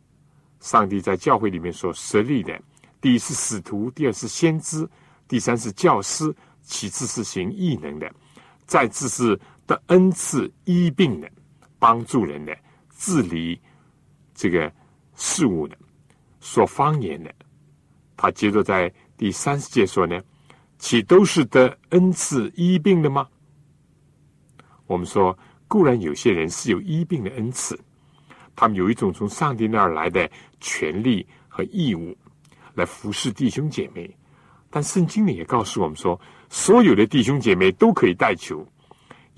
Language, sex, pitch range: Chinese, male, 105-160 Hz